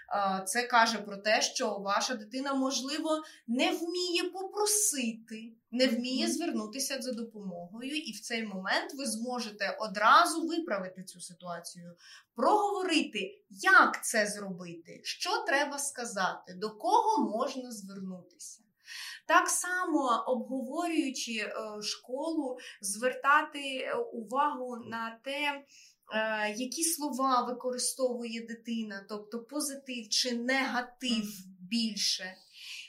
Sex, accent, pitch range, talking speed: female, native, 220-300 Hz, 100 wpm